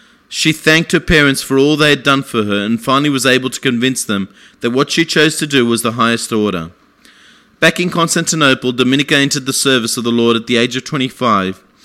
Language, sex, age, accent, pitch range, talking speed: English, male, 30-49, Australian, 120-145 Hz, 220 wpm